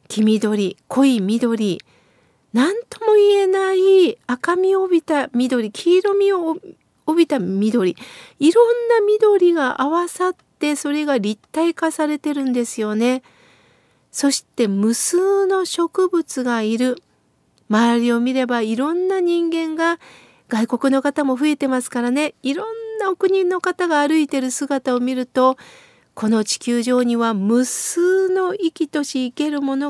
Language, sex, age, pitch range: Japanese, female, 40-59, 240-330 Hz